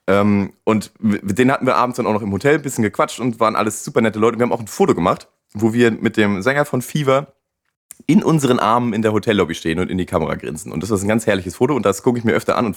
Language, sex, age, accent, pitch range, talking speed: German, male, 30-49, German, 100-130 Hz, 280 wpm